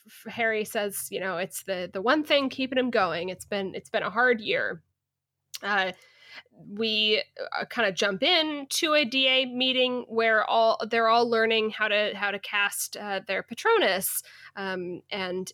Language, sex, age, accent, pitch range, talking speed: English, female, 20-39, American, 210-265 Hz, 170 wpm